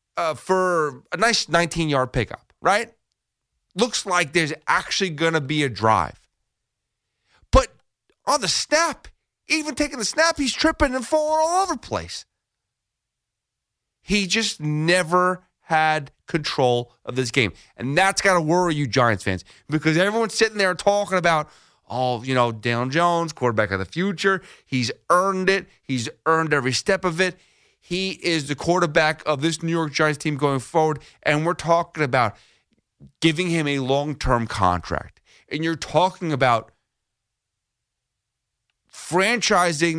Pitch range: 130-190 Hz